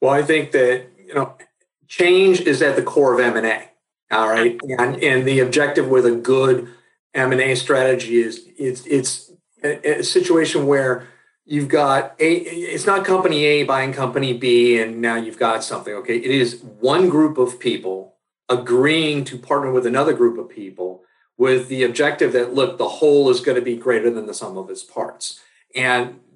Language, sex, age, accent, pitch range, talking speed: English, male, 50-69, American, 125-160 Hz, 180 wpm